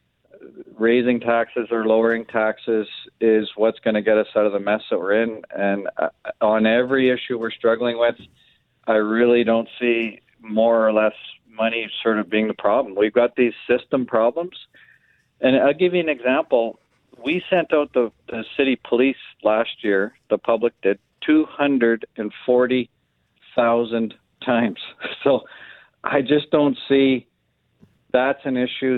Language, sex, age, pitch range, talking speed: English, male, 50-69, 110-125 Hz, 145 wpm